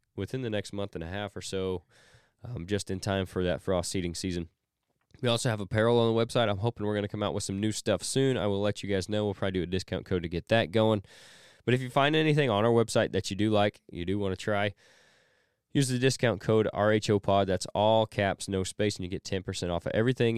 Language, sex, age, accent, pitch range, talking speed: English, male, 20-39, American, 95-115 Hz, 255 wpm